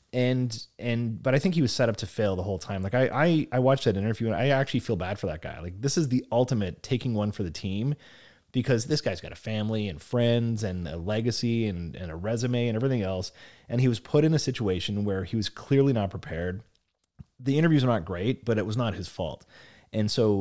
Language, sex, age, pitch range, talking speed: English, male, 30-49, 100-130 Hz, 245 wpm